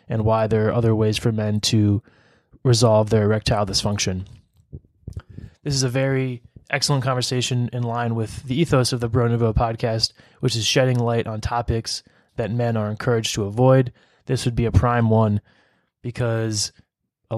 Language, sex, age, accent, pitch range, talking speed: English, male, 20-39, American, 110-130 Hz, 165 wpm